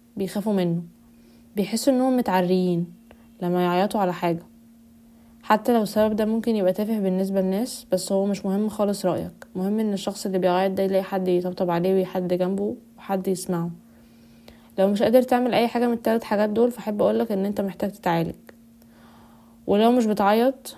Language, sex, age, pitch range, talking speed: Arabic, female, 20-39, 185-230 Hz, 165 wpm